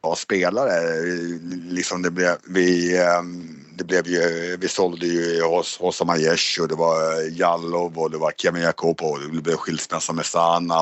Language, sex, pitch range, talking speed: Swedish, male, 85-95 Hz, 160 wpm